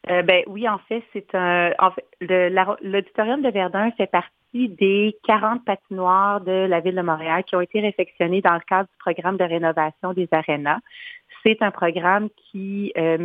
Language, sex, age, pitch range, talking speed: French, female, 40-59, 175-205 Hz, 190 wpm